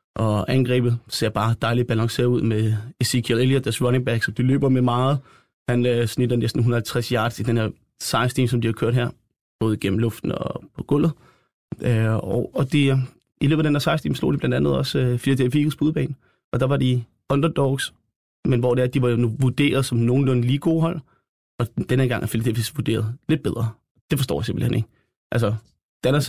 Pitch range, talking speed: 115-130 Hz, 200 wpm